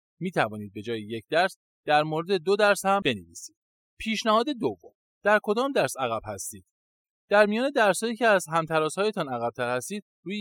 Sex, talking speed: male, 155 wpm